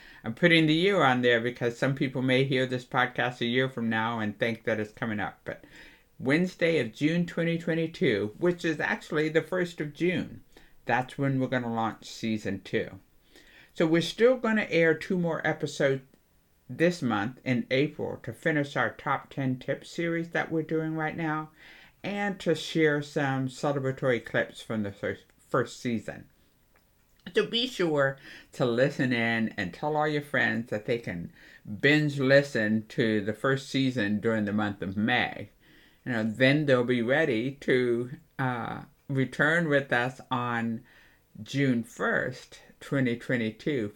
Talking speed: 160 wpm